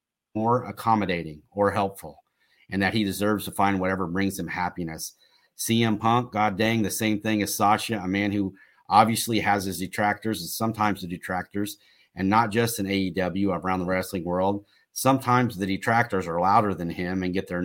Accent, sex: American, male